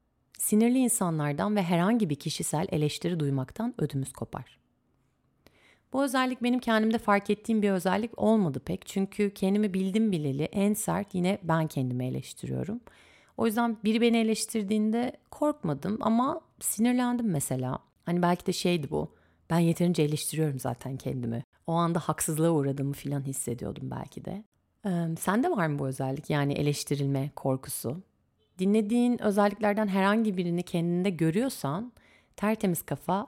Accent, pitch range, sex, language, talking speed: native, 145-205 Hz, female, Turkish, 135 wpm